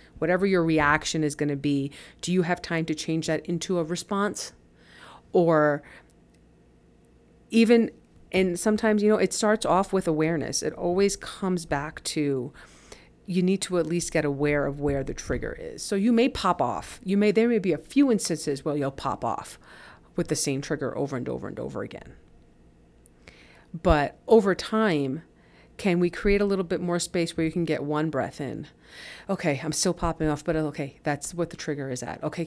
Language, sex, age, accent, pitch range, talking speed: English, female, 40-59, American, 145-175 Hz, 190 wpm